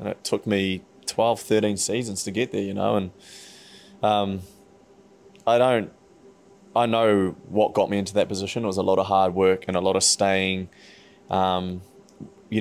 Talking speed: 180 wpm